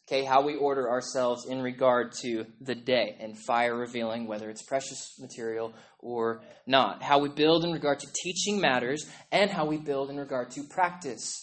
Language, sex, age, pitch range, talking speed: English, male, 20-39, 120-160 Hz, 185 wpm